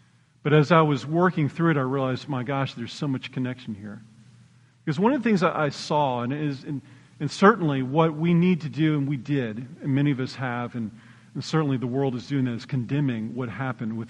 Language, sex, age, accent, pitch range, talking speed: English, male, 40-59, American, 125-160 Hz, 230 wpm